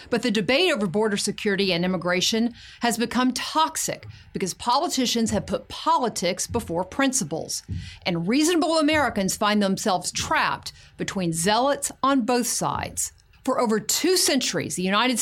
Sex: female